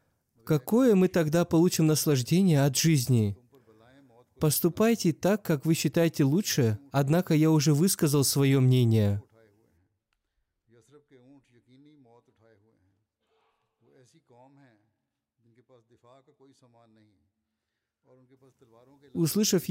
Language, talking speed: Russian, 60 wpm